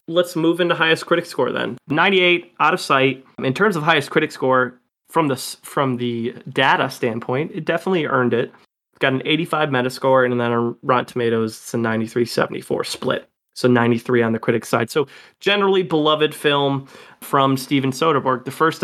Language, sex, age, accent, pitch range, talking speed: English, male, 20-39, American, 125-145 Hz, 180 wpm